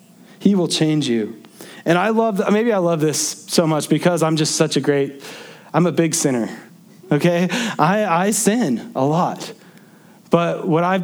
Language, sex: English, male